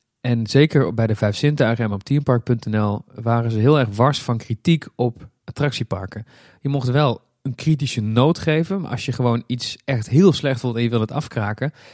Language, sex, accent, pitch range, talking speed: Dutch, male, Dutch, 110-135 Hz, 190 wpm